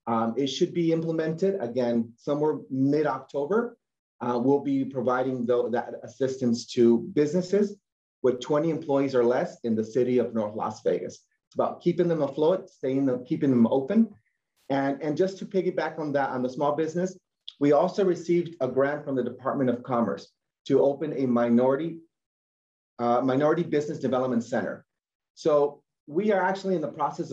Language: English